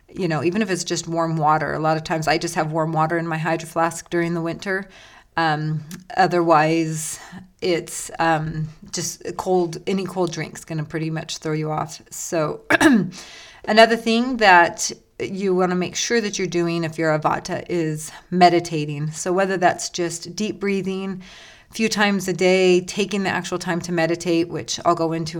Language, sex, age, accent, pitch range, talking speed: English, female, 30-49, American, 155-180 Hz, 185 wpm